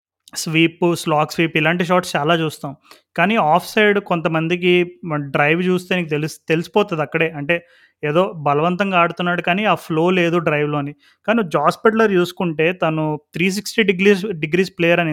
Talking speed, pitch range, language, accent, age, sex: 145 wpm, 150-185 Hz, Telugu, native, 30-49, male